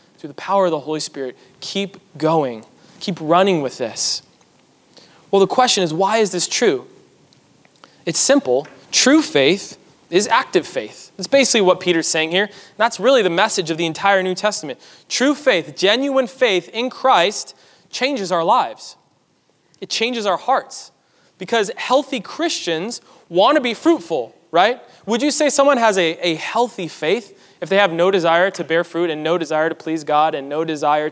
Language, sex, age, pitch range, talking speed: English, male, 20-39, 170-235 Hz, 175 wpm